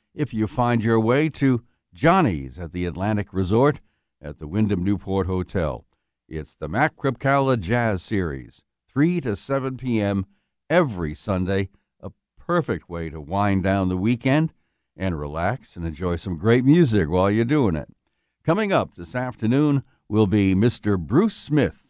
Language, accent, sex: English, American, male